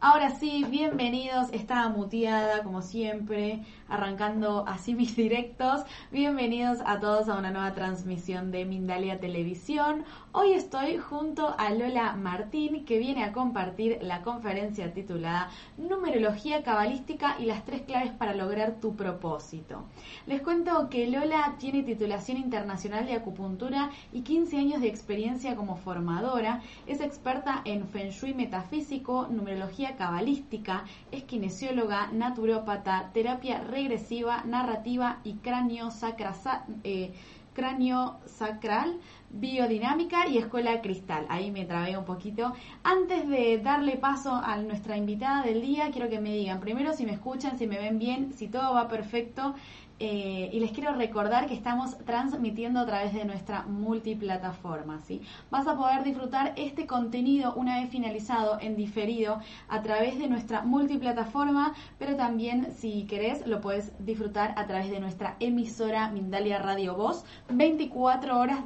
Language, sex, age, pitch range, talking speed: Spanish, female, 20-39, 210-260 Hz, 140 wpm